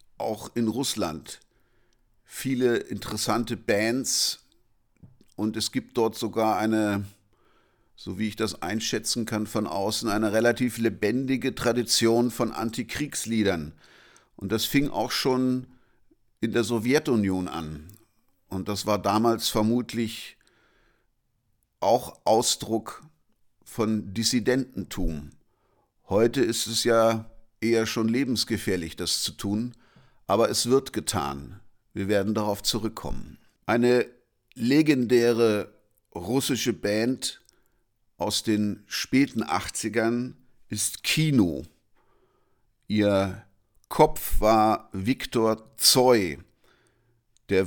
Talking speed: 100 wpm